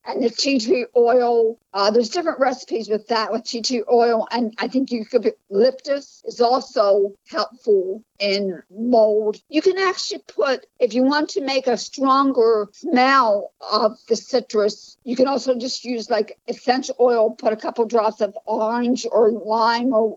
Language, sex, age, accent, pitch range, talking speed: English, female, 60-79, American, 215-255 Hz, 170 wpm